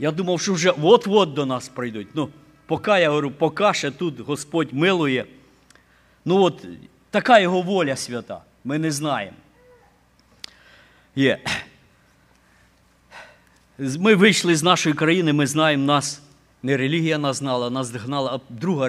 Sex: male